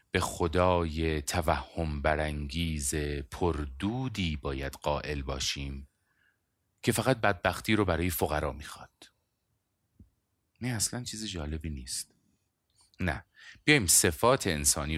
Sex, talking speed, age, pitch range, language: male, 95 wpm, 30-49, 75-100 Hz, Persian